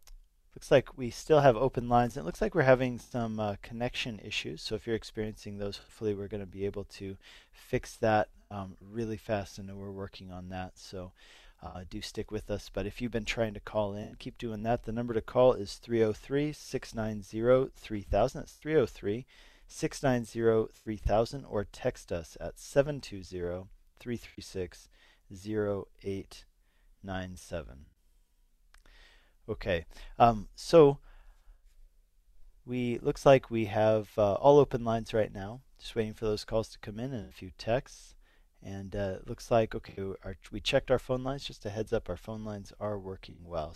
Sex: male